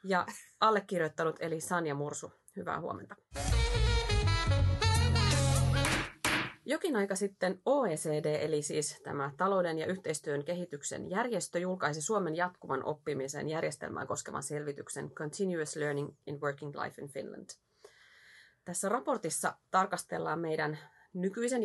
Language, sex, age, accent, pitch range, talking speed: Finnish, female, 30-49, native, 150-195 Hz, 105 wpm